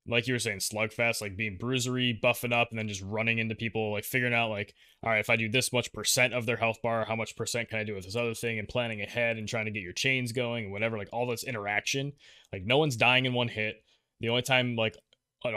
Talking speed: 270 wpm